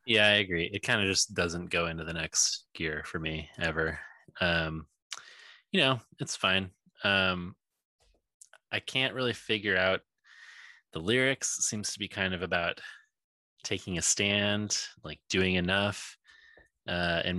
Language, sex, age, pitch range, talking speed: English, male, 20-39, 90-120 Hz, 150 wpm